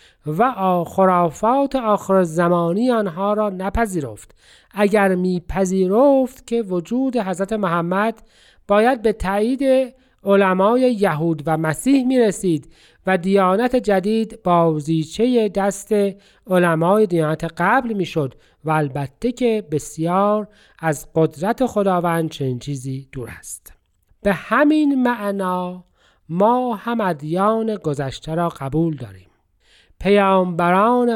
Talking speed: 100 wpm